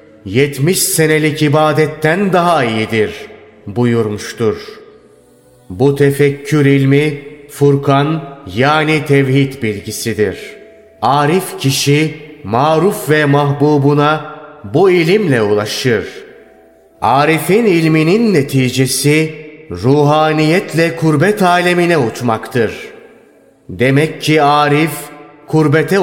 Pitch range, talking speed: 135-155 Hz, 75 wpm